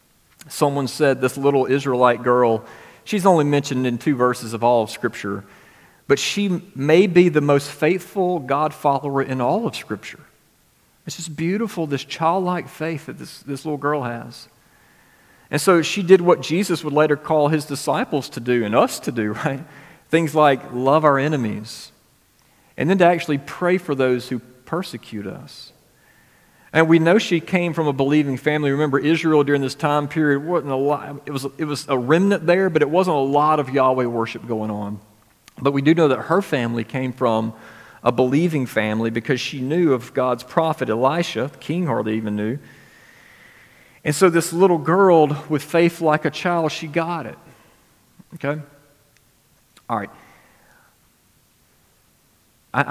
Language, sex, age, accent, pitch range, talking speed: English, male, 40-59, American, 125-160 Hz, 170 wpm